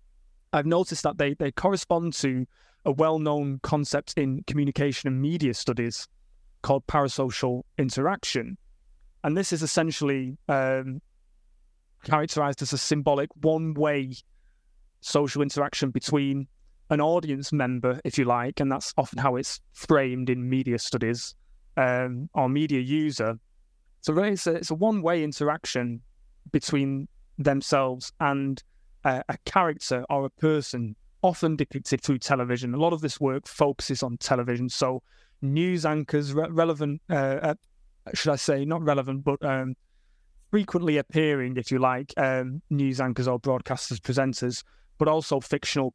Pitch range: 125-150 Hz